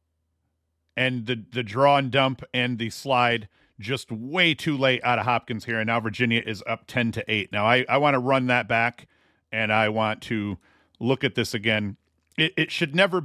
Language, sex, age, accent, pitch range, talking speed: English, male, 40-59, American, 110-135 Hz, 205 wpm